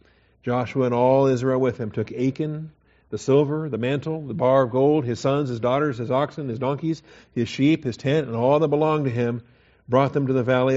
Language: English